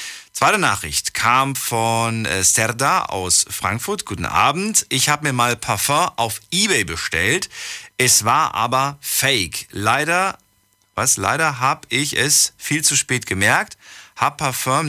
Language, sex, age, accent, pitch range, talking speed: German, male, 40-59, German, 100-135 Hz, 135 wpm